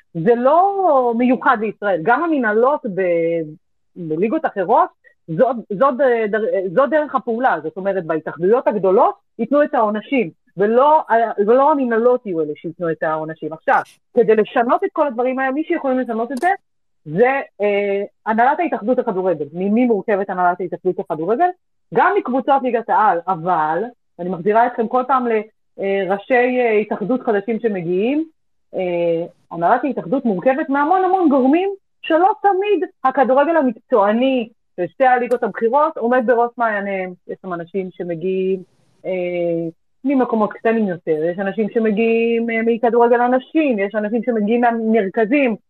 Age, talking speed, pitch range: 30-49, 135 wpm, 190-265 Hz